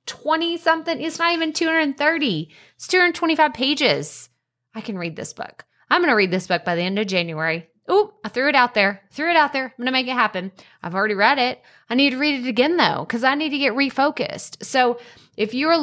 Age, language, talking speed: 20-39, English, 230 wpm